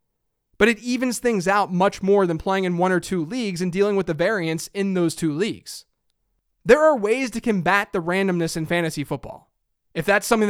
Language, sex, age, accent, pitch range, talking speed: English, male, 20-39, American, 175-225 Hz, 205 wpm